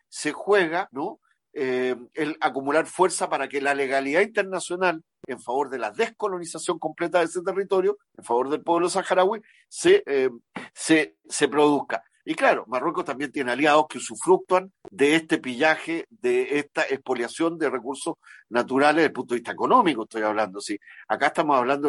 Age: 50-69